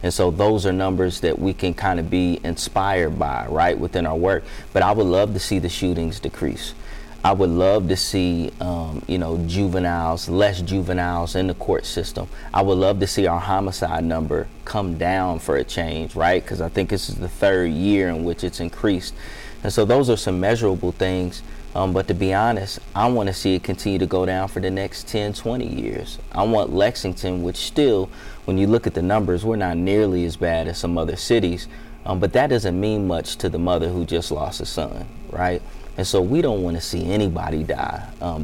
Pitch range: 85-95 Hz